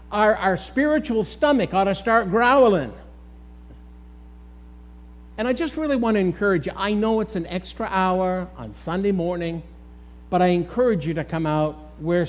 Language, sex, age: English, male, 60-79